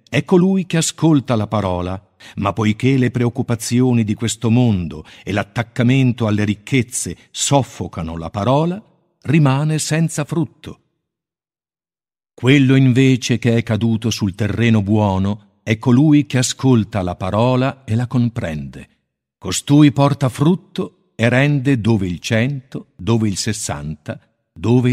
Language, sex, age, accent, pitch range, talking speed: Italian, male, 50-69, native, 100-140 Hz, 125 wpm